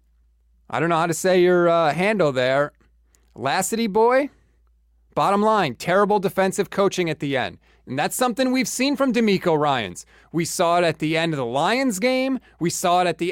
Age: 30-49